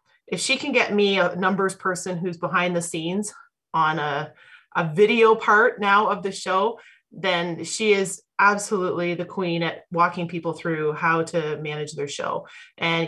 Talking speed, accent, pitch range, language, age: 170 wpm, American, 165-205 Hz, English, 30-49